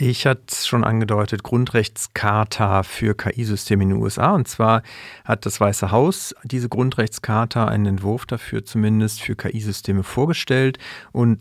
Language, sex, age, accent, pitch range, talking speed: German, male, 40-59, German, 105-120 Hz, 135 wpm